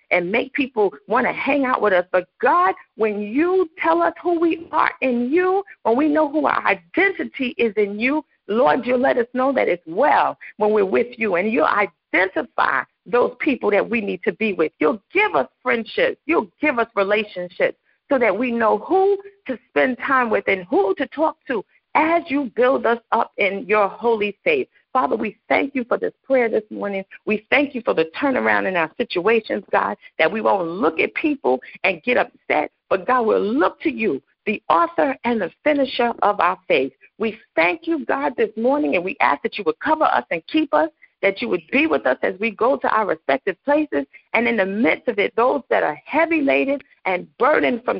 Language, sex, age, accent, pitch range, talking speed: English, female, 50-69, American, 210-315 Hz, 210 wpm